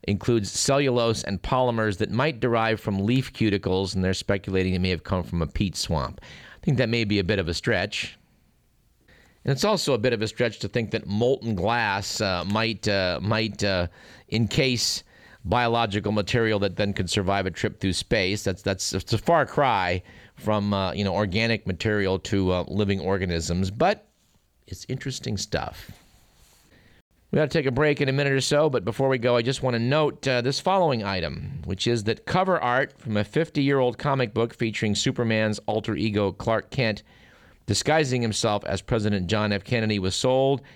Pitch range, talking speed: 100-130 Hz, 190 wpm